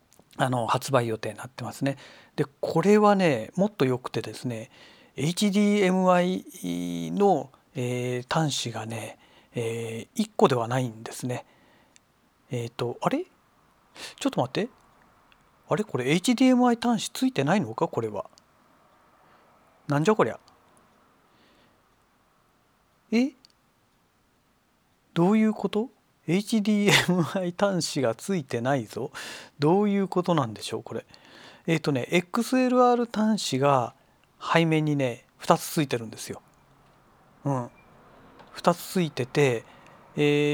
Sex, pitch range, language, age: male, 130-190 Hz, Japanese, 40-59